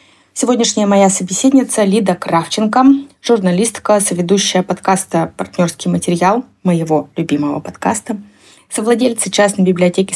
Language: Russian